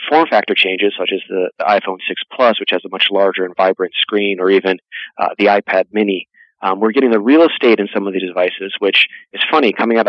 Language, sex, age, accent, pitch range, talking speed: English, male, 30-49, American, 95-115 Hz, 230 wpm